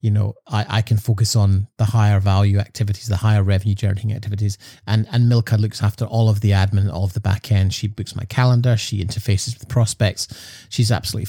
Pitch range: 105-120 Hz